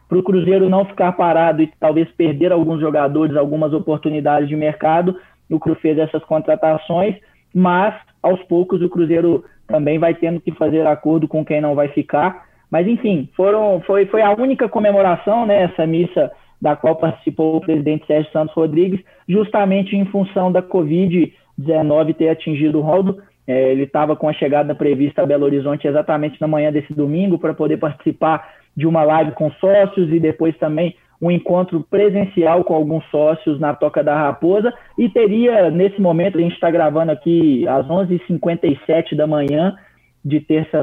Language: Portuguese